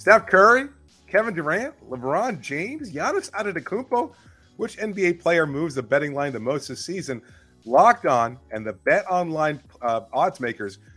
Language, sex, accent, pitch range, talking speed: English, male, American, 110-170 Hz, 155 wpm